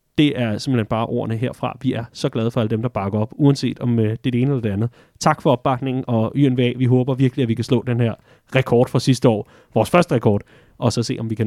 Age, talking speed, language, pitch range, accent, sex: 30-49, 270 wpm, Danish, 120-180 Hz, native, male